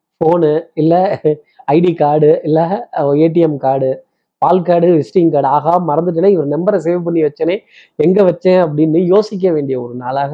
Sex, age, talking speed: male, 20-39, 145 wpm